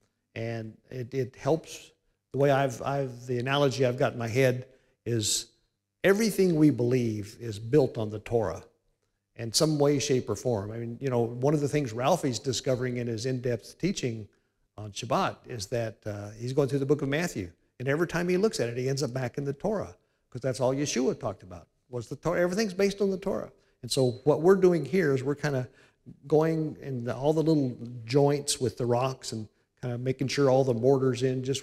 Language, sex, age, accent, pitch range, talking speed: English, male, 50-69, American, 110-140 Hz, 215 wpm